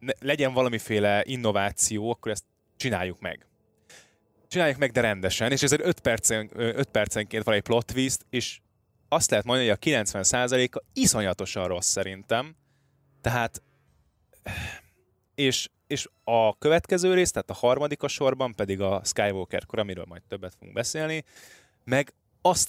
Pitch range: 95-125 Hz